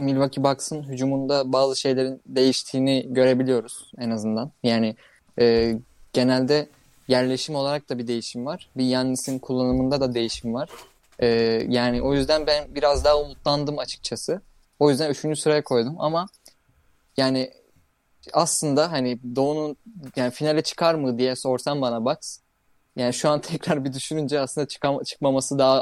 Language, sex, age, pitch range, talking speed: Turkish, male, 20-39, 120-145 Hz, 140 wpm